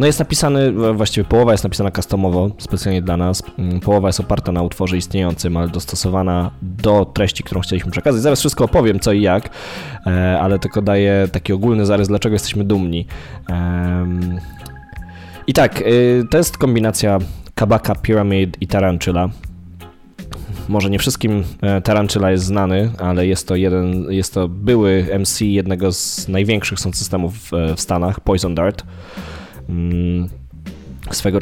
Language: English